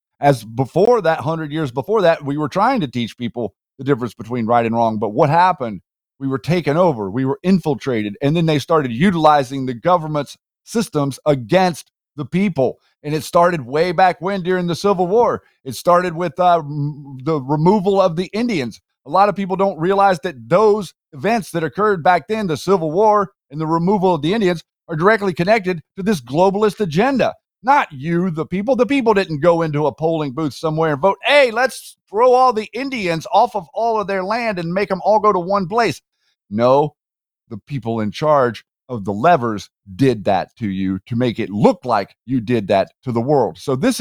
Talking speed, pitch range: 200 wpm, 140-195 Hz